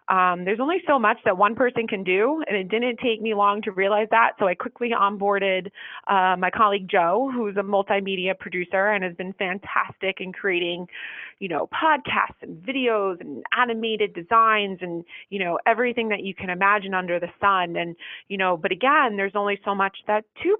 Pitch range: 185-220 Hz